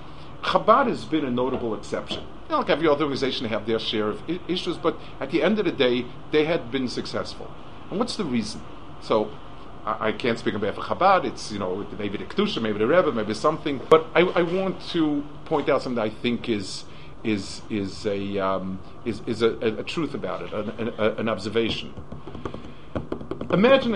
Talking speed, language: 210 wpm, English